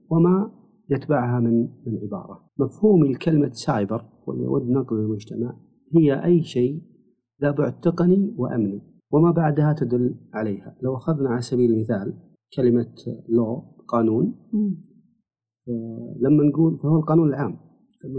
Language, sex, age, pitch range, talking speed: Arabic, male, 40-59, 120-170 Hz, 115 wpm